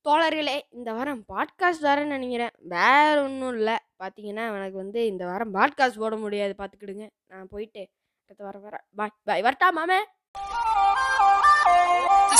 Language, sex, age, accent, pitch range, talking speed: Tamil, female, 20-39, native, 240-350 Hz, 130 wpm